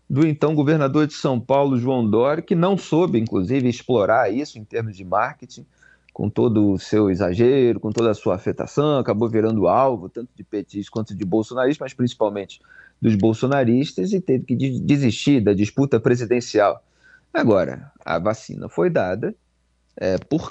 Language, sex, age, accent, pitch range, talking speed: Portuguese, male, 40-59, Brazilian, 110-170 Hz, 160 wpm